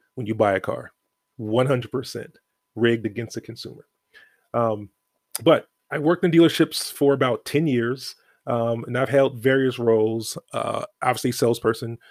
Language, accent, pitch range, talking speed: English, American, 115-135 Hz, 140 wpm